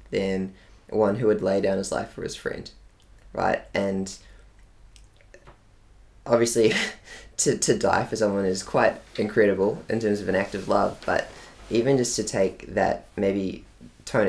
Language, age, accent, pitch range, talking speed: English, 20-39, Australian, 95-110 Hz, 155 wpm